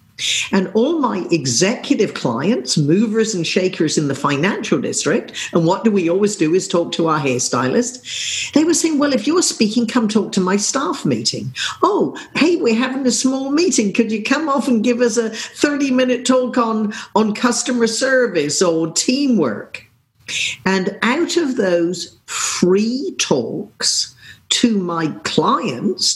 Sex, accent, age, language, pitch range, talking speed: female, British, 50-69, English, 170-240 Hz, 155 wpm